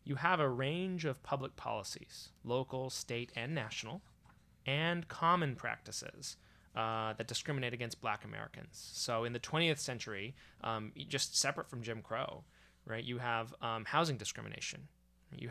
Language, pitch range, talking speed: English, 110-140 Hz, 145 wpm